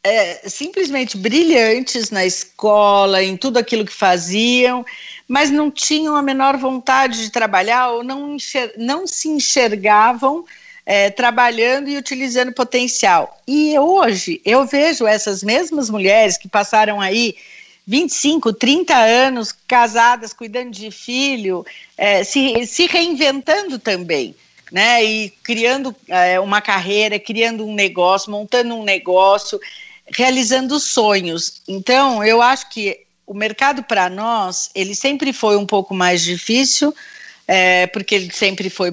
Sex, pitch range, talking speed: female, 195-260 Hz, 120 wpm